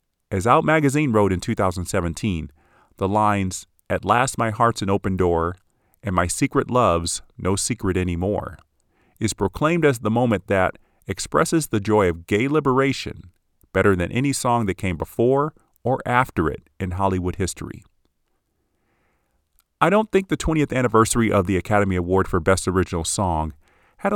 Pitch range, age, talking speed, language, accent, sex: 90-120 Hz, 40-59, 155 wpm, English, American, male